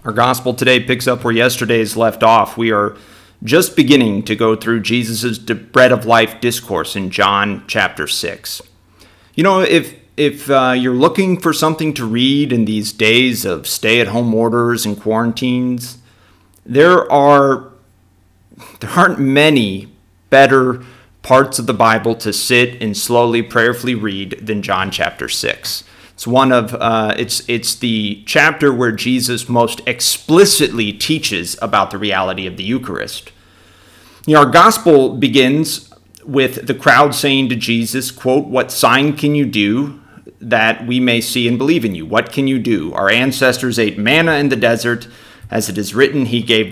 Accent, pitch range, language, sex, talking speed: American, 105-130 Hz, English, male, 160 wpm